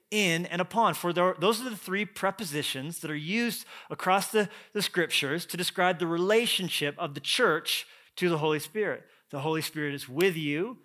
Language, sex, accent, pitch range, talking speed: English, male, American, 160-200 Hz, 195 wpm